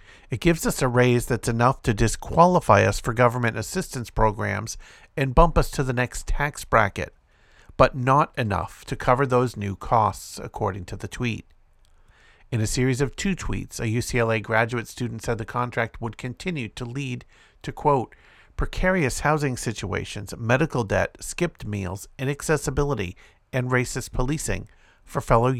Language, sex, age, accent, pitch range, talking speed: English, male, 50-69, American, 105-130 Hz, 155 wpm